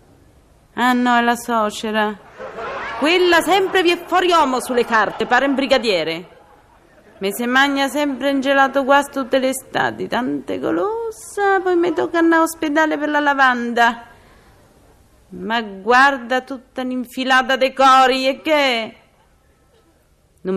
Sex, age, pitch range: female, 30-49, 180-265 Hz